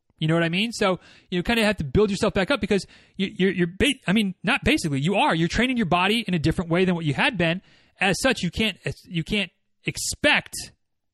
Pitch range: 160-210 Hz